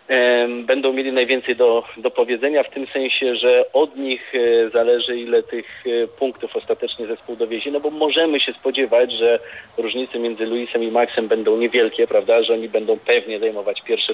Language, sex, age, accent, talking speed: Polish, male, 40-59, native, 165 wpm